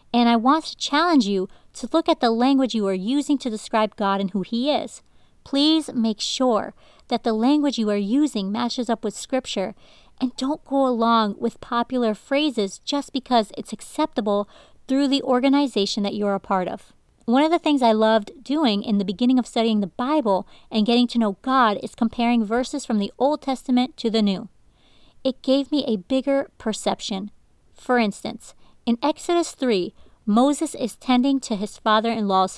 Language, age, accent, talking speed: English, 40-59, American, 185 wpm